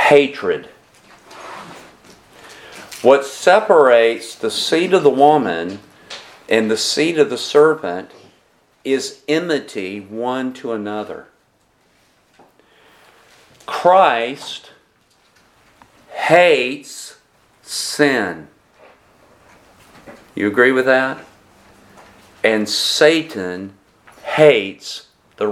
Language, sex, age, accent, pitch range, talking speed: English, male, 50-69, American, 110-150 Hz, 70 wpm